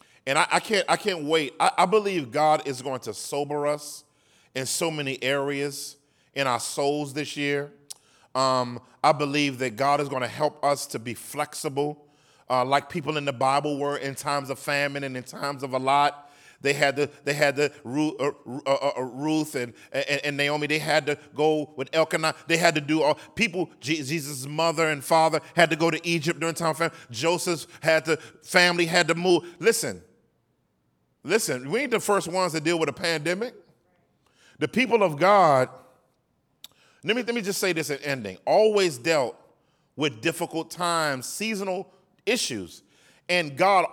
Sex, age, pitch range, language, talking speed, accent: male, 40-59, 140-170 Hz, English, 185 wpm, American